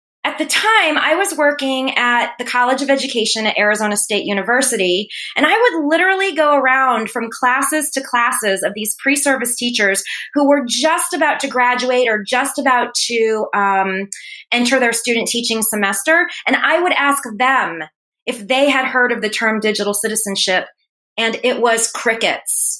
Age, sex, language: 20-39, female, English